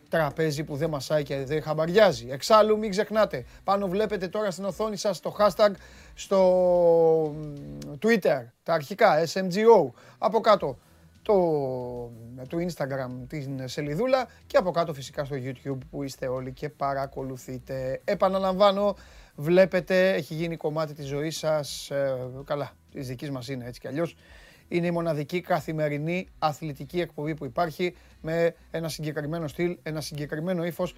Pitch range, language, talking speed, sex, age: 145-185 Hz, Greek, 140 wpm, male, 30-49